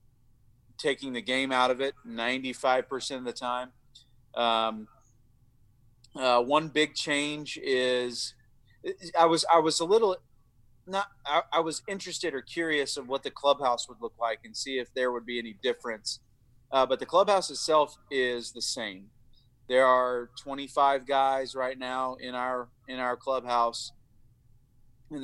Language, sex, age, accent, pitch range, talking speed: English, male, 40-59, American, 115-130 Hz, 150 wpm